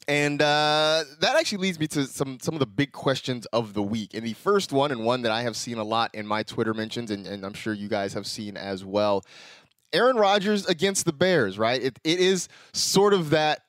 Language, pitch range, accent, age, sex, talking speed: English, 115-165 Hz, American, 20-39, male, 235 wpm